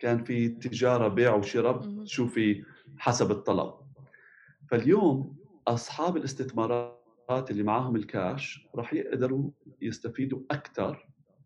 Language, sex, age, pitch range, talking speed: Arabic, male, 30-49, 115-145 Hz, 100 wpm